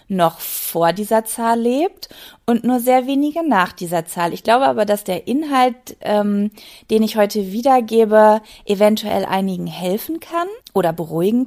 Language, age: German, 20-39